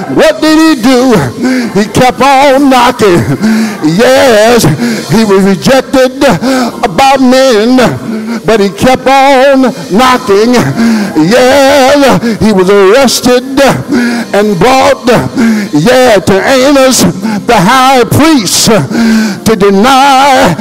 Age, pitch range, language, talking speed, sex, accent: 60-79, 220-275 Hz, English, 95 wpm, male, American